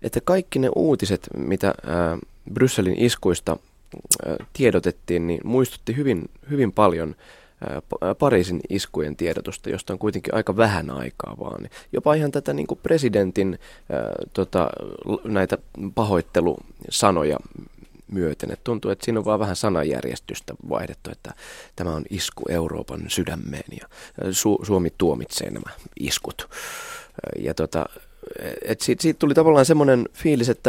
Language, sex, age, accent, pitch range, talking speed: Finnish, male, 20-39, native, 85-130 Hz, 130 wpm